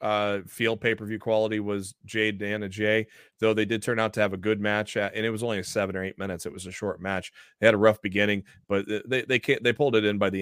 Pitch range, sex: 105-120 Hz, male